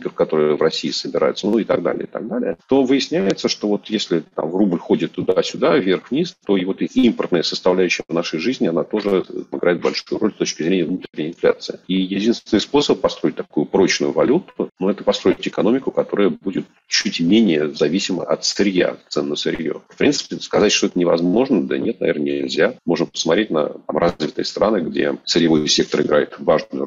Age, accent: 40-59, native